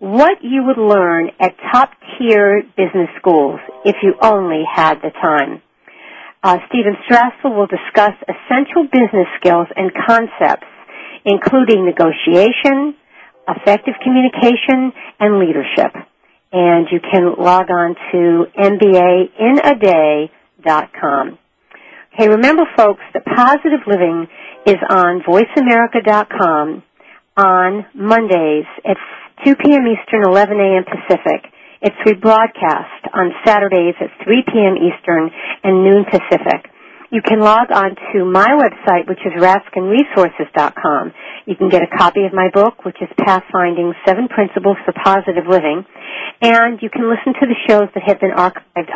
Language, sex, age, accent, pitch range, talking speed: English, female, 50-69, American, 185-235 Hz, 125 wpm